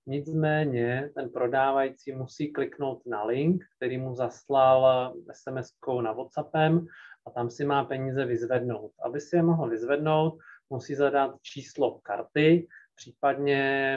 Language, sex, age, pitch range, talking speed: Slovak, male, 30-49, 125-140 Hz, 125 wpm